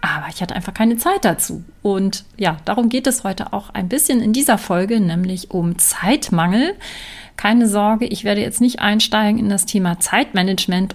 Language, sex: German, female